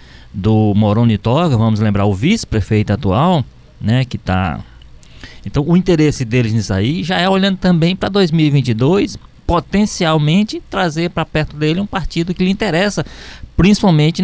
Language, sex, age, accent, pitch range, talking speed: Portuguese, male, 20-39, Brazilian, 110-165 Hz, 145 wpm